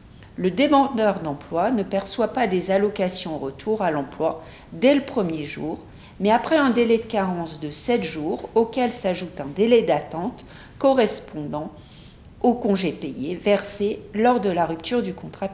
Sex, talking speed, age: female, 155 wpm, 50-69